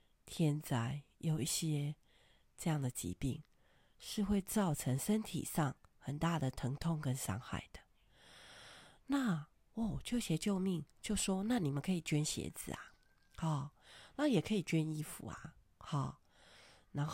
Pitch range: 135-190 Hz